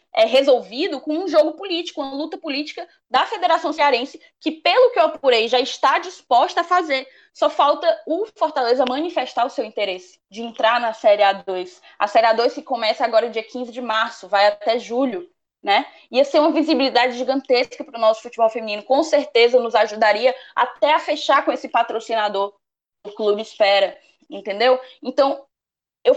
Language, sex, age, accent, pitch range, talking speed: Portuguese, female, 10-29, Brazilian, 235-320 Hz, 170 wpm